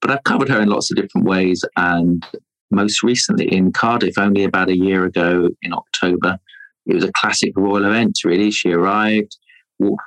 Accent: British